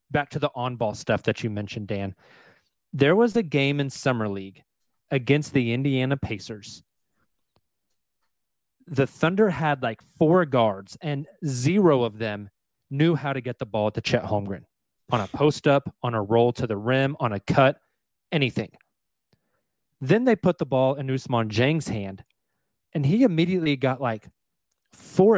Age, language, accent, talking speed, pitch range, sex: 30-49, English, American, 160 wpm, 120-150 Hz, male